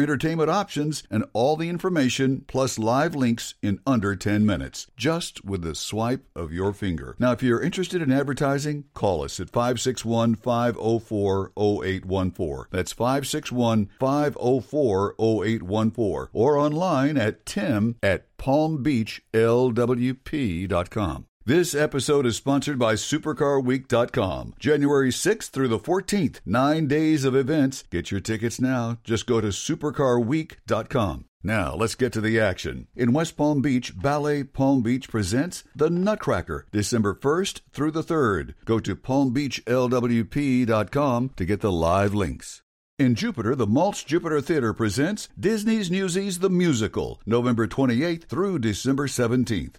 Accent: American